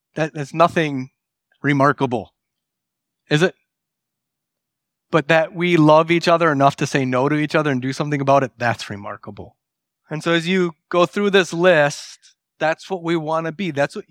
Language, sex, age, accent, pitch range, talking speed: English, male, 30-49, American, 135-165 Hz, 180 wpm